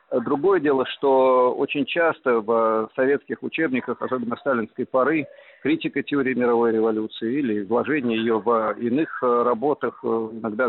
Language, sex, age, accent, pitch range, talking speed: Russian, male, 50-69, native, 110-135 Hz, 125 wpm